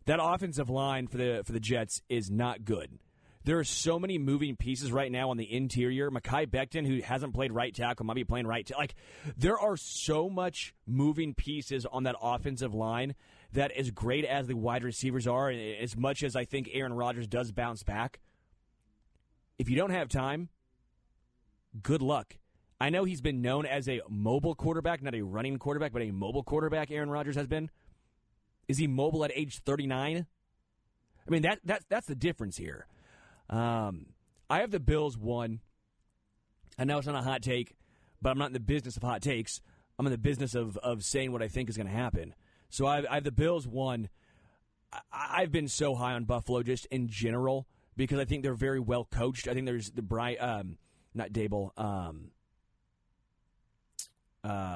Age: 30-49